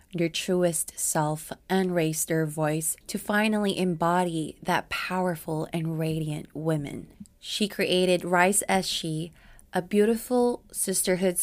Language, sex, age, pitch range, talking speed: English, female, 20-39, 165-195 Hz, 120 wpm